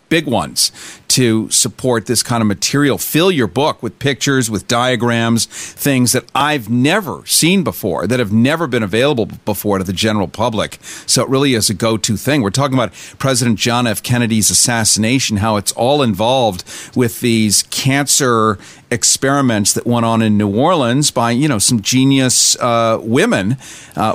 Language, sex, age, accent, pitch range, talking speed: English, male, 50-69, American, 105-125 Hz, 170 wpm